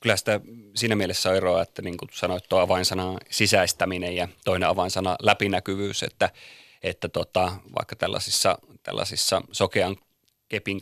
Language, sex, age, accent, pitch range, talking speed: Finnish, male, 30-49, native, 95-105 Hz, 140 wpm